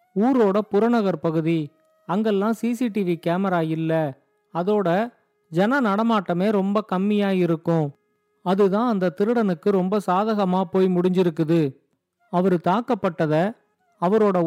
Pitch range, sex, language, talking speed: 175-220 Hz, male, Tamil, 95 wpm